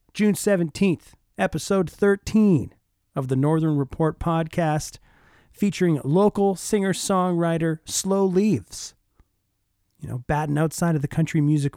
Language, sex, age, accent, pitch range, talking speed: English, male, 40-59, American, 115-185 Hz, 110 wpm